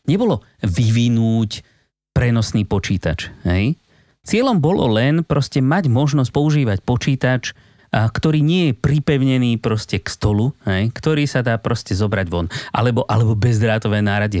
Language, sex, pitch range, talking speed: Slovak, male, 100-125 Hz, 130 wpm